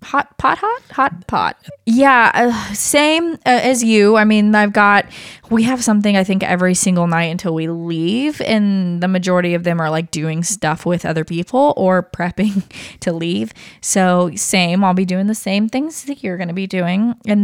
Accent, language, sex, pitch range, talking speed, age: American, English, female, 180-225 Hz, 195 wpm, 20-39